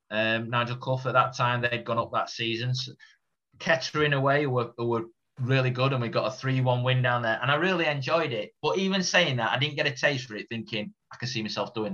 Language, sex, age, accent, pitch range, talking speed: English, male, 30-49, British, 110-140 Hz, 240 wpm